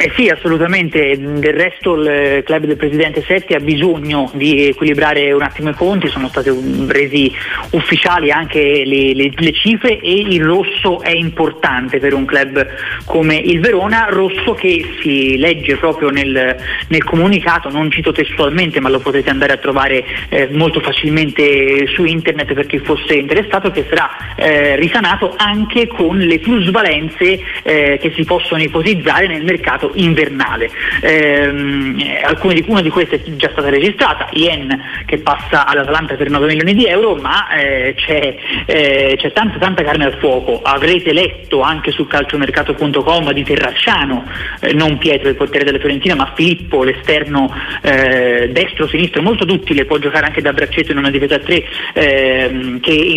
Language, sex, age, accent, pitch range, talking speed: Italian, male, 30-49, native, 140-170 Hz, 160 wpm